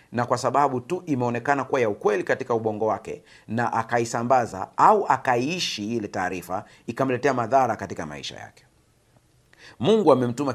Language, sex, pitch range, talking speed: Swahili, male, 115-145 Hz, 135 wpm